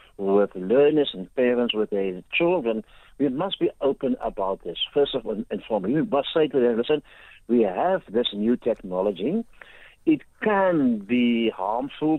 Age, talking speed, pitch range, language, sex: 60-79, 155 wpm, 120-175 Hz, English, male